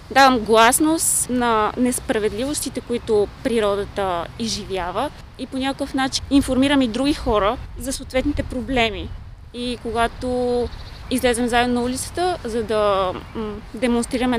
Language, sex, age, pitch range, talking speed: Bulgarian, female, 20-39, 230-265 Hz, 115 wpm